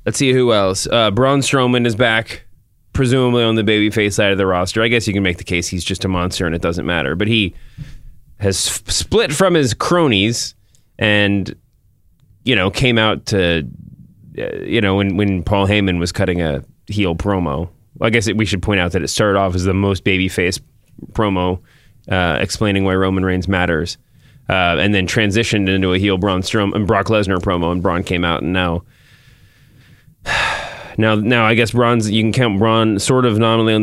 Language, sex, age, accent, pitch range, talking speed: English, male, 20-39, American, 95-120 Hz, 200 wpm